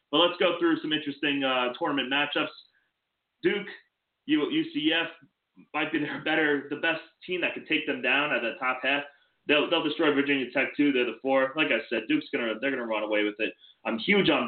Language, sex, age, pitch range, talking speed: English, male, 20-39, 115-165 Hz, 210 wpm